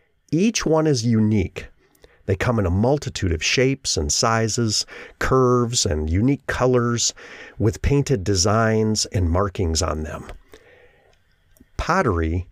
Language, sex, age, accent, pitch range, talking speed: English, male, 40-59, American, 95-135 Hz, 120 wpm